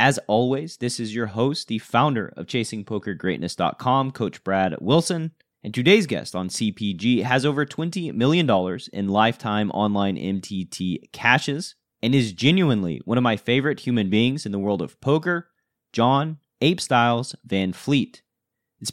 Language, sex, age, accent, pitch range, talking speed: English, male, 30-49, American, 105-135 Hz, 150 wpm